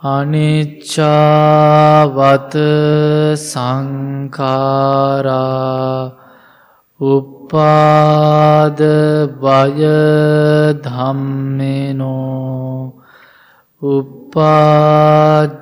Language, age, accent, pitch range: English, 20-39, Indian, 130-150 Hz